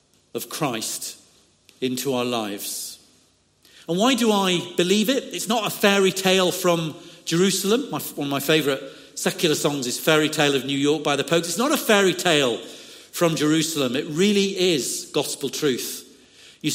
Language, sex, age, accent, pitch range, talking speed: English, male, 50-69, British, 140-185 Hz, 165 wpm